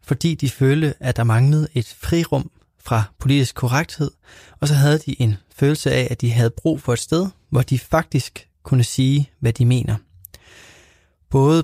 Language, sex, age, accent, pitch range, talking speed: Danish, male, 20-39, native, 110-145 Hz, 175 wpm